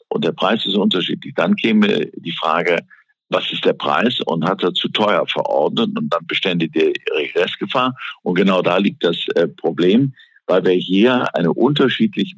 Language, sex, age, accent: German, male, 60-79, German